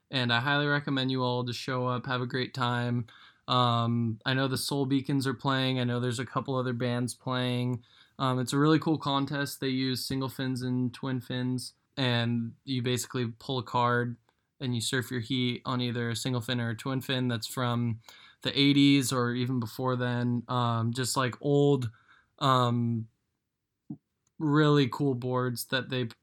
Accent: American